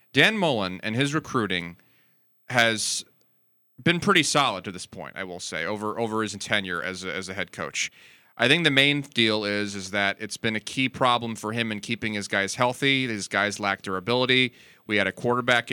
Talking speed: 200 wpm